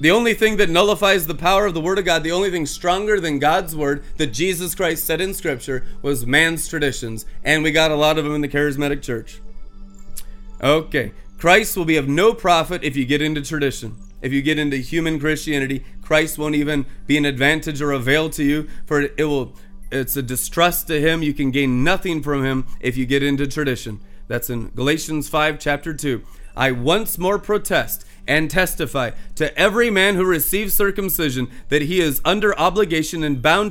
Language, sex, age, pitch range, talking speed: English, male, 30-49, 140-170 Hz, 200 wpm